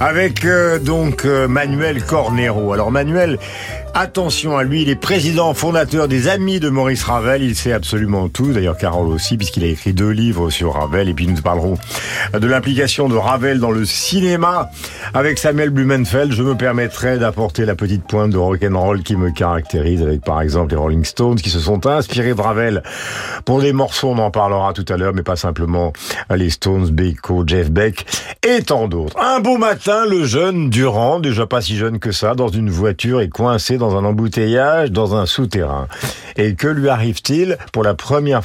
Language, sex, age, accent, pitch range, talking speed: French, male, 50-69, French, 95-135 Hz, 190 wpm